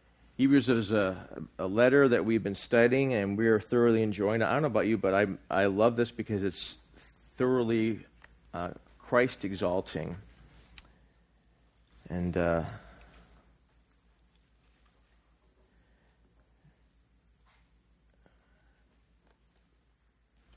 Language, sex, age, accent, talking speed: English, male, 40-59, American, 95 wpm